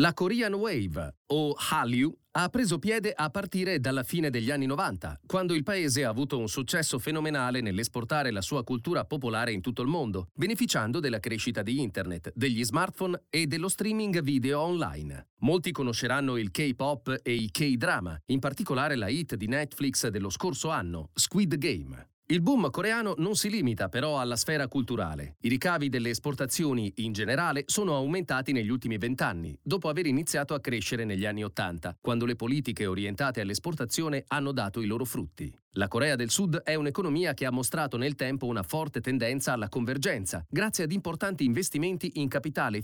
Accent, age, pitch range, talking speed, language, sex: native, 30-49, 115-165 Hz, 170 wpm, Italian, male